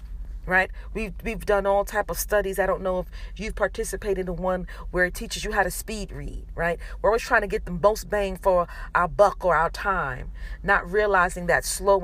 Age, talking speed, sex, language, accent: 40-59, 215 wpm, female, English, American